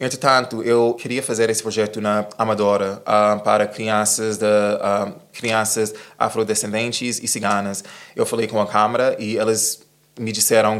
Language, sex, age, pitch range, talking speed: Portuguese, male, 20-39, 105-115 Hz, 150 wpm